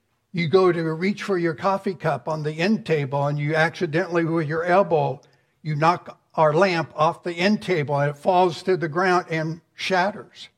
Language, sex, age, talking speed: English, male, 60-79, 195 wpm